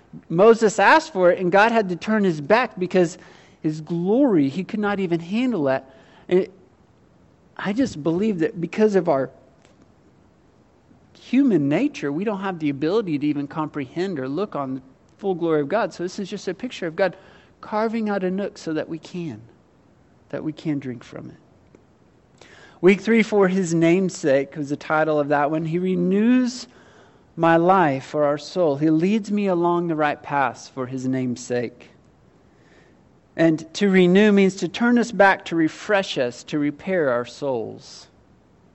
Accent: American